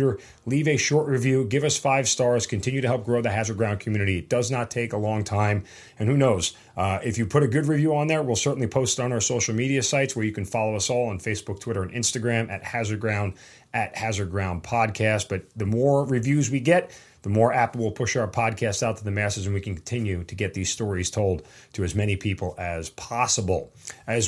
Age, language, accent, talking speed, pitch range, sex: 30-49, English, American, 235 wpm, 100-125 Hz, male